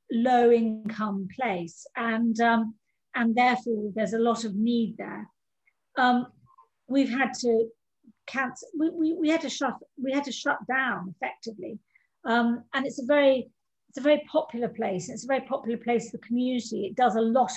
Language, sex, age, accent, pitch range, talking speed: English, female, 50-69, British, 215-255 Hz, 175 wpm